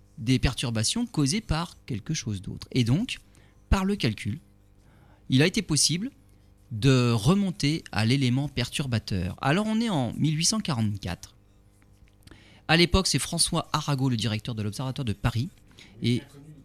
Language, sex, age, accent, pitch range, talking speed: French, male, 40-59, French, 105-150 Hz, 135 wpm